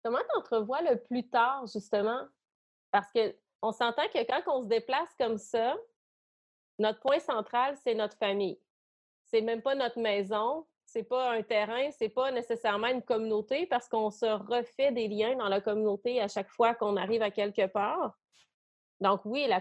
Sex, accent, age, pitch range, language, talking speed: female, Canadian, 30-49, 215-255 Hz, French, 170 wpm